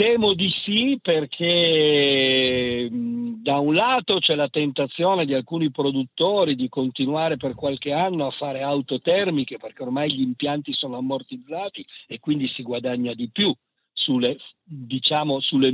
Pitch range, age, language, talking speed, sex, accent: 135-175 Hz, 50-69, Italian, 135 wpm, male, native